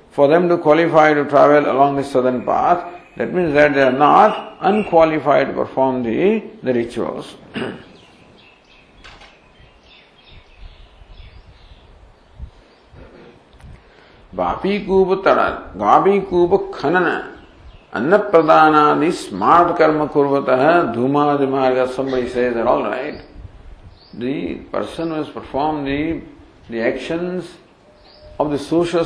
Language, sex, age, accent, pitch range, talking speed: English, male, 50-69, Indian, 125-155 Hz, 80 wpm